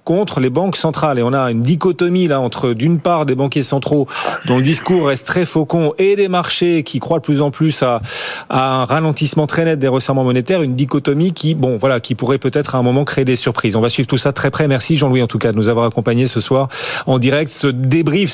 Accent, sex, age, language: French, male, 40-59, French